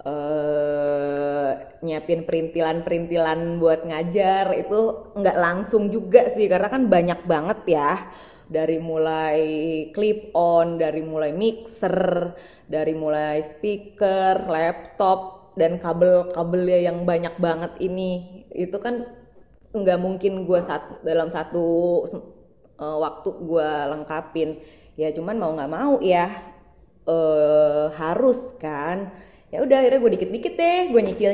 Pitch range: 160-215 Hz